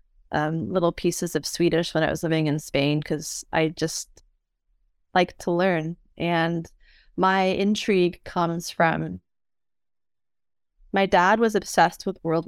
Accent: American